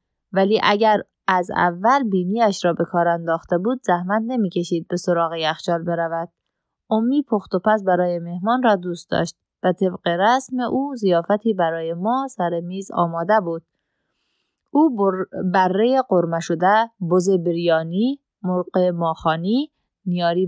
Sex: female